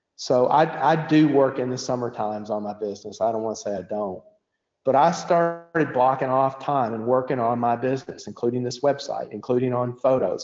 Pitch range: 120-150 Hz